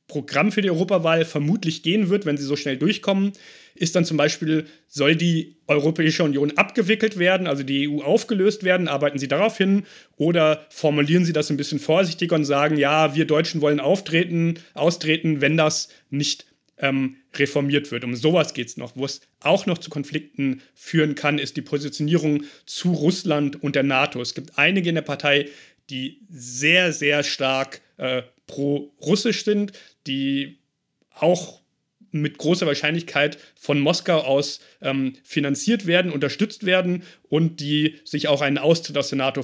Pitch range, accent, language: 145-170 Hz, German, German